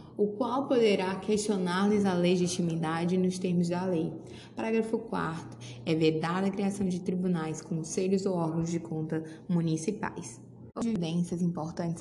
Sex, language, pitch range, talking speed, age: female, Portuguese, 165-190 Hz, 130 wpm, 20-39